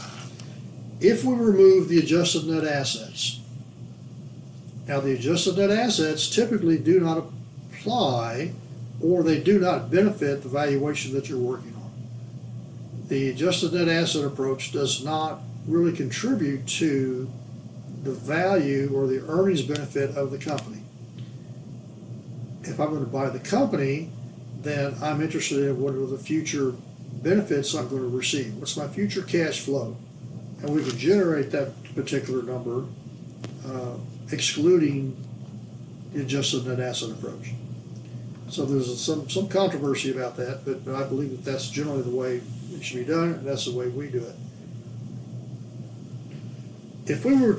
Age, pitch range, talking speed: 60-79, 125-160 Hz, 145 wpm